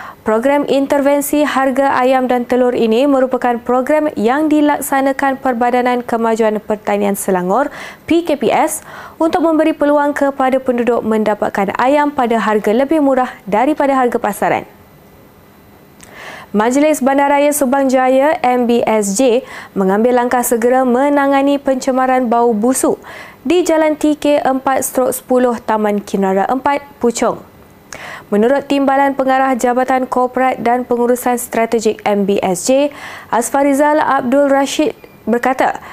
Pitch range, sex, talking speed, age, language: 235-280 Hz, female, 105 wpm, 20-39, Malay